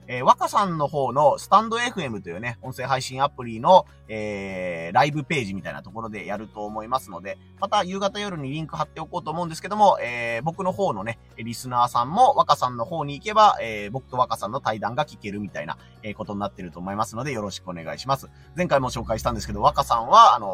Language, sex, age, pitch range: Japanese, male, 30-49, 110-160 Hz